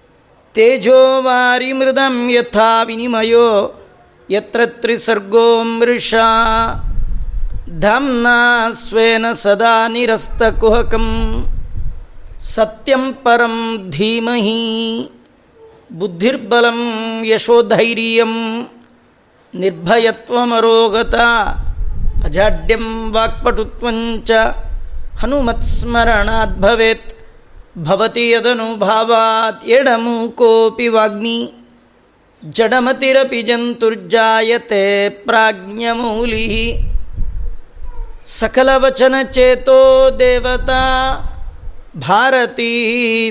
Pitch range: 220-235 Hz